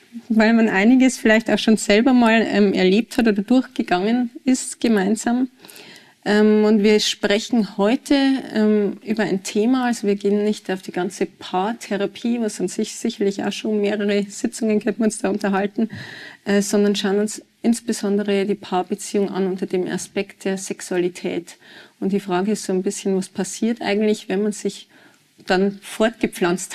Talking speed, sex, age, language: 165 wpm, female, 30-49, German